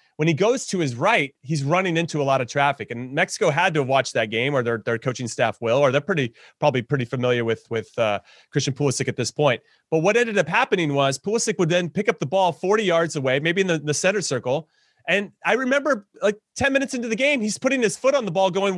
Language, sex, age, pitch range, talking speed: English, male, 30-49, 140-195 Hz, 255 wpm